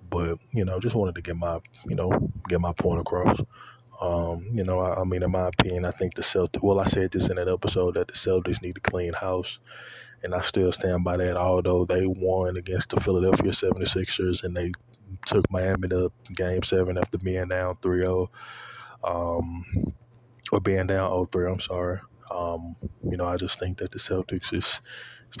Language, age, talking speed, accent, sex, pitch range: English, 20-39, 195 wpm, American, male, 90-95 Hz